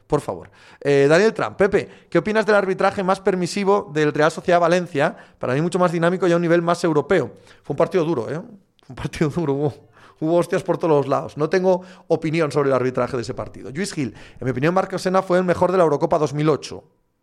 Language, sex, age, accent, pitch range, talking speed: Spanish, male, 30-49, Spanish, 140-180 Hz, 230 wpm